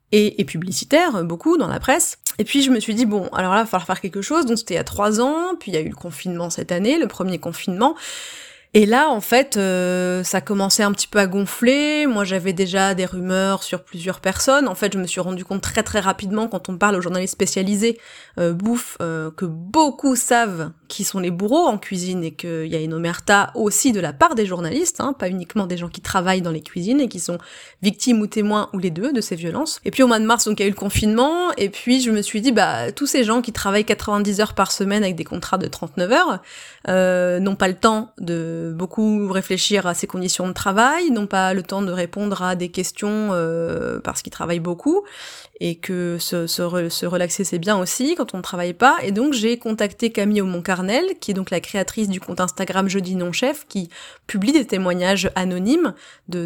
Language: French